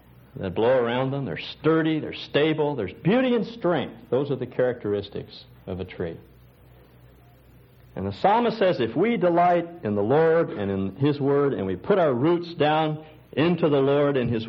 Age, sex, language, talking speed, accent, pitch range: 60-79, male, English, 180 wpm, American, 100-155 Hz